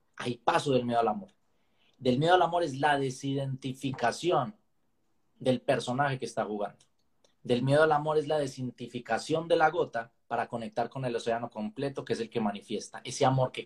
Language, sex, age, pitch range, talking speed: Spanish, male, 30-49, 130-180 Hz, 185 wpm